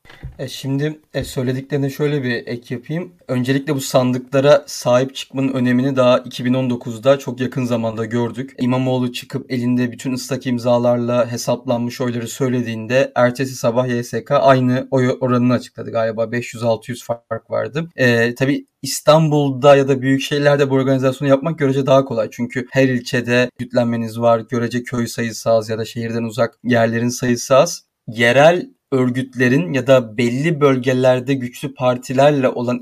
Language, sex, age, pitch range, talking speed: Turkish, male, 30-49, 125-150 Hz, 140 wpm